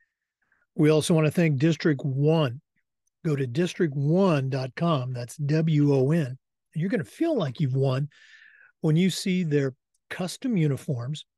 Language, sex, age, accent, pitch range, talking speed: English, male, 50-69, American, 135-180 Hz, 130 wpm